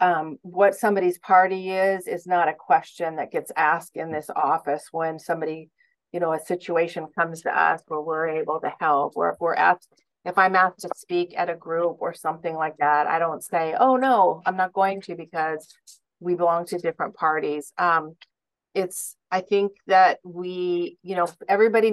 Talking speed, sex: 185 wpm, female